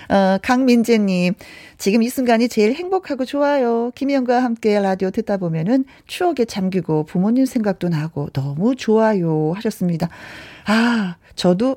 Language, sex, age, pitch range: Korean, female, 40-59, 185-260 Hz